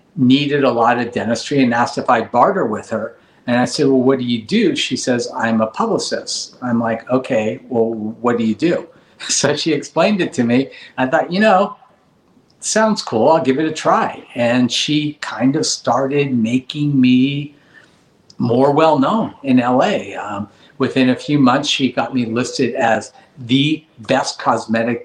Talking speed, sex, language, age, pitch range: 180 wpm, male, English, 50-69, 115-145 Hz